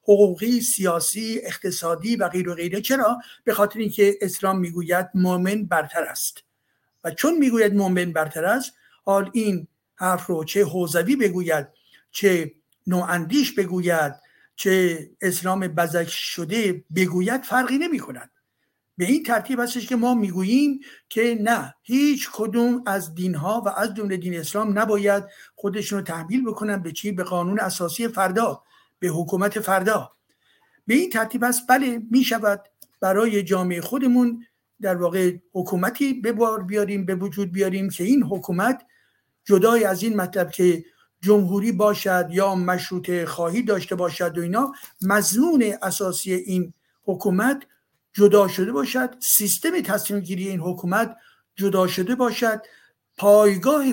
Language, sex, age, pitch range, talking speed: Persian, male, 50-69, 180-230 Hz, 135 wpm